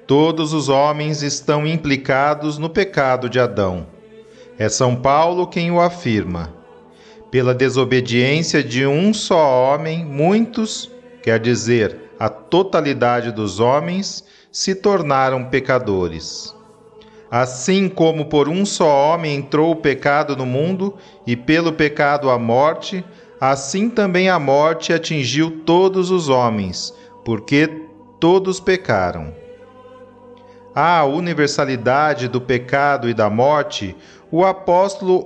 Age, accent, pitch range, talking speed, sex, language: 40-59, Brazilian, 130-190 Hz, 115 wpm, male, Portuguese